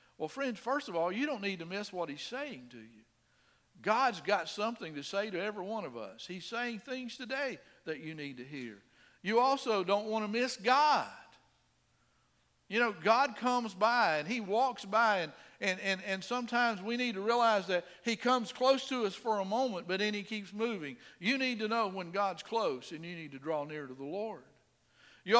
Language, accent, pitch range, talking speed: English, American, 165-235 Hz, 210 wpm